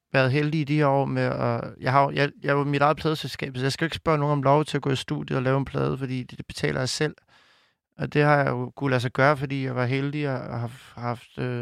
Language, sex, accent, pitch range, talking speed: Danish, male, native, 120-140 Hz, 290 wpm